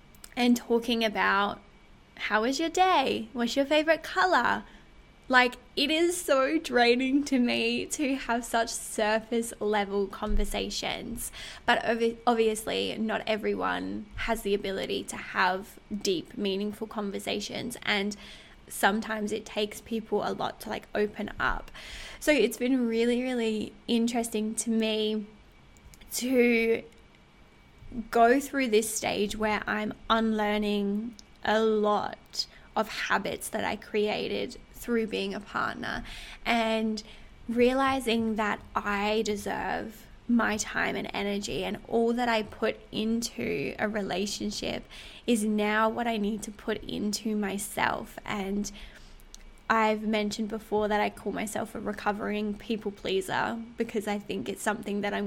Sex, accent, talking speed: female, Australian, 130 wpm